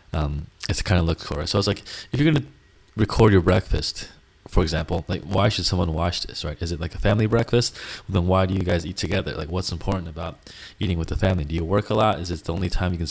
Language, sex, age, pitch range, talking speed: English, male, 30-49, 85-100 Hz, 275 wpm